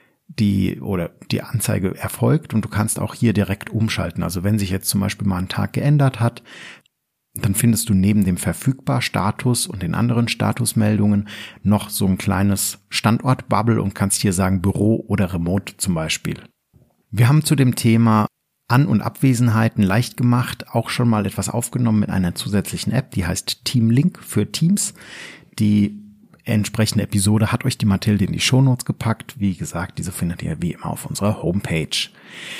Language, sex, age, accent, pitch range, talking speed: German, male, 50-69, German, 100-120 Hz, 170 wpm